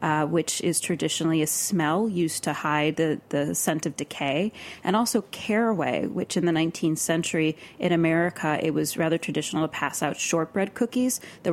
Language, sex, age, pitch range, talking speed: English, female, 30-49, 160-220 Hz, 175 wpm